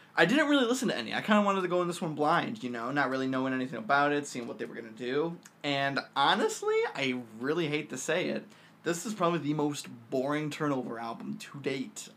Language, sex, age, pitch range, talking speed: English, male, 20-39, 120-170 Hz, 240 wpm